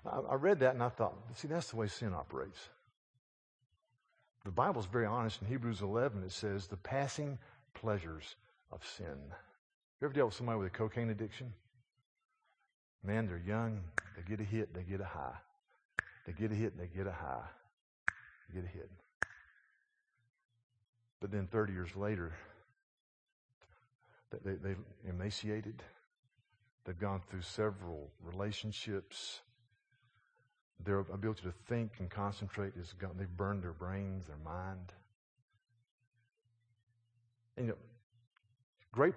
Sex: male